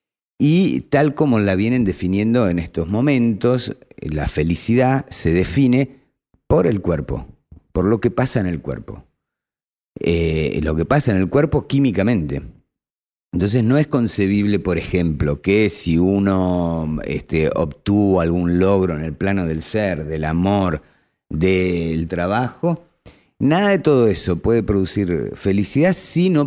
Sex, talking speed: male, 140 wpm